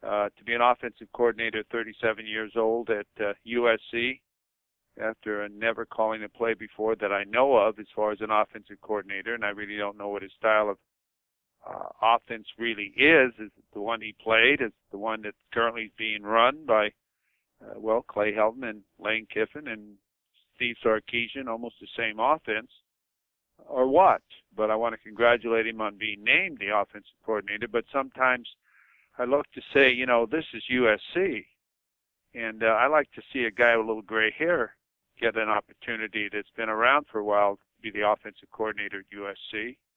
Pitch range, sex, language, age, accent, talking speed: 105-120 Hz, male, English, 50-69, American, 185 wpm